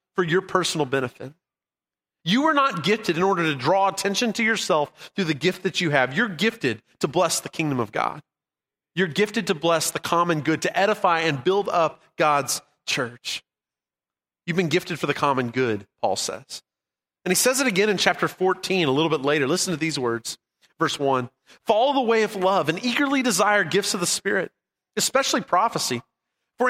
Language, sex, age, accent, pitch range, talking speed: English, male, 30-49, American, 150-200 Hz, 190 wpm